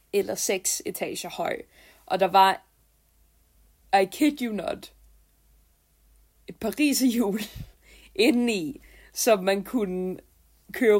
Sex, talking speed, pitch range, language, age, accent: female, 100 wpm, 185-255 Hz, Danish, 20-39, native